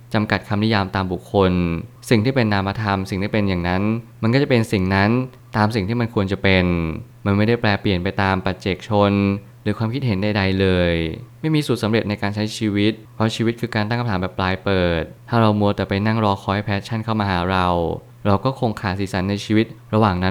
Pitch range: 100-120 Hz